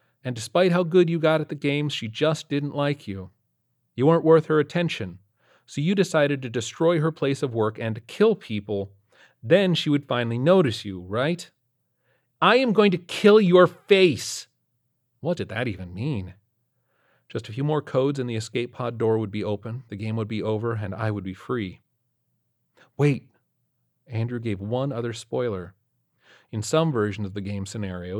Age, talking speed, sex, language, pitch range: 40-59, 185 wpm, male, English, 100-135 Hz